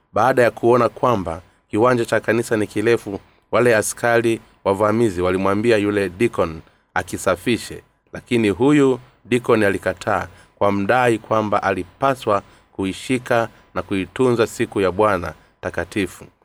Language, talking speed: Swahili, 115 wpm